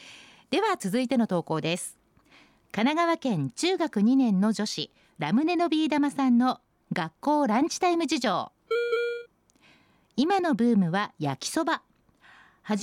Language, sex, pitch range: Japanese, female, 195-315 Hz